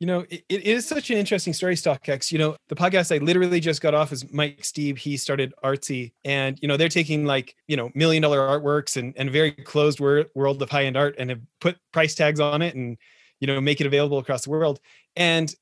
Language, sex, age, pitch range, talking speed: English, male, 30-49, 145-180 Hz, 235 wpm